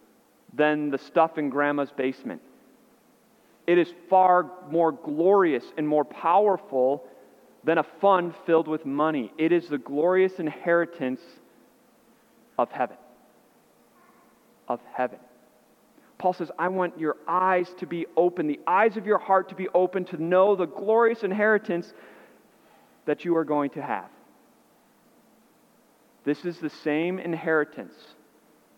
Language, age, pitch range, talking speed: English, 40-59, 140-180 Hz, 130 wpm